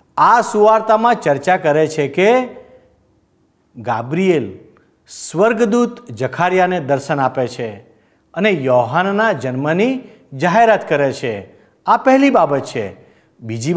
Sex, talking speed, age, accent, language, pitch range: male, 100 wpm, 50-69, native, Gujarati, 140-225 Hz